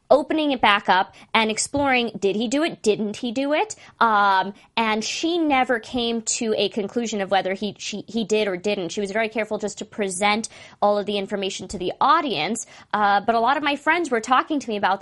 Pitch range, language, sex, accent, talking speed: 195-240 Hz, English, female, American, 225 wpm